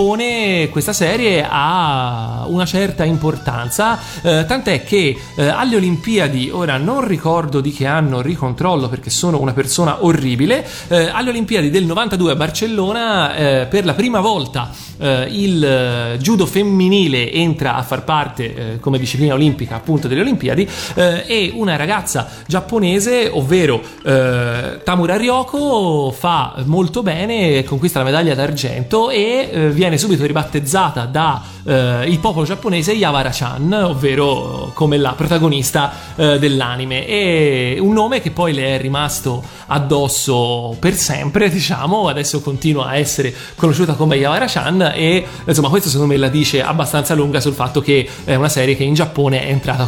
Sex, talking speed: male, 150 wpm